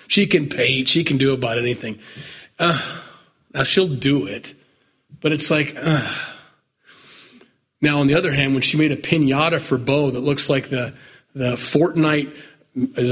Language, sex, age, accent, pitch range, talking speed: English, male, 40-59, American, 135-190 Hz, 165 wpm